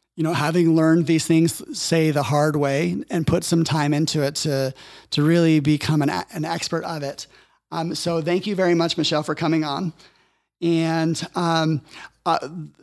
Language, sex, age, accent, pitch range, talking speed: English, male, 30-49, American, 145-170 Hz, 180 wpm